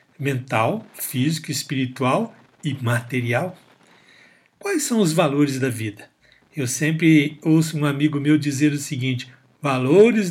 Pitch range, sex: 145-190 Hz, male